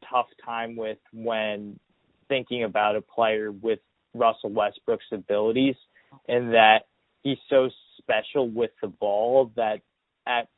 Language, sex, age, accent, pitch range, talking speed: English, male, 20-39, American, 110-125 Hz, 125 wpm